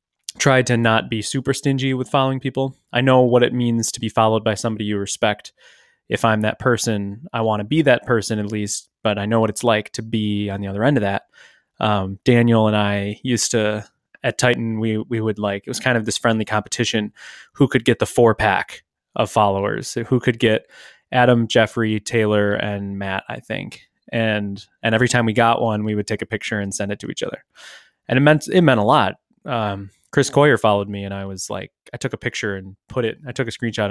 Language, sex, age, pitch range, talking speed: English, male, 20-39, 105-125 Hz, 230 wpm